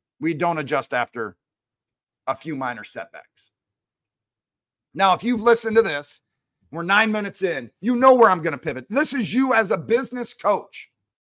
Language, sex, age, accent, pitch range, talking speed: English, male, 40-59, American, 150-215 Hz, 170 wpm